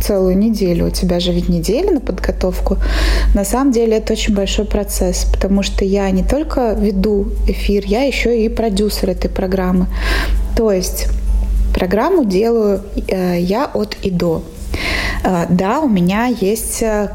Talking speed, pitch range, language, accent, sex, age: 145 wpm, 195-235 Hz, Russian, native, female, 20-39